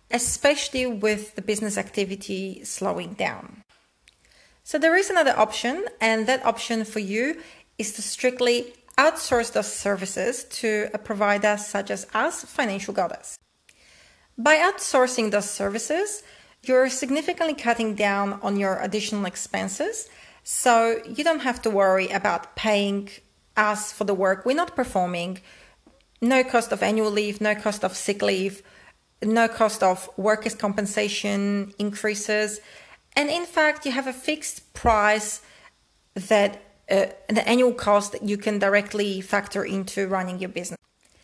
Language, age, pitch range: English, 40-59, 200-245 Hz